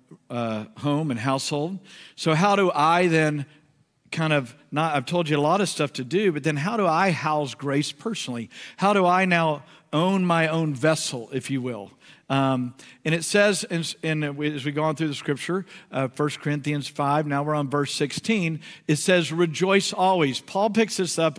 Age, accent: 50-69, American